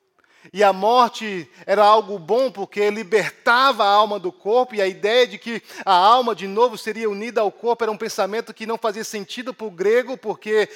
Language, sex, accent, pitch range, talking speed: English, male, Brazilian, 180-230 Hz, 200 wpm